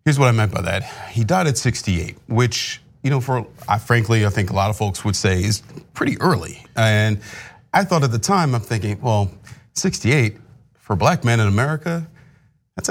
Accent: American